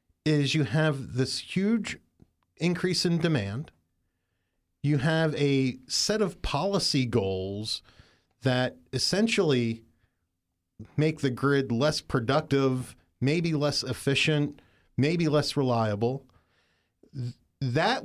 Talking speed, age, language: 95 wpm, 40-59, English